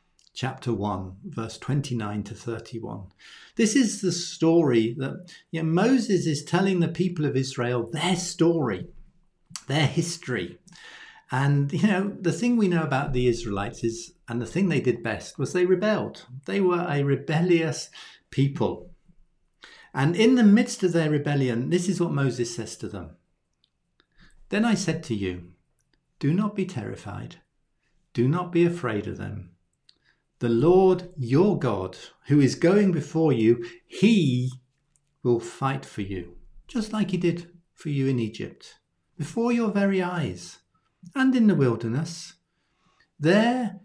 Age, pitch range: 50-69, 115-175 Hz